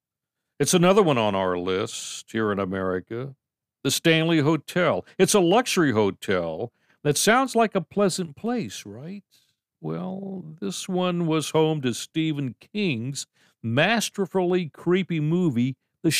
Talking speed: 130 wpm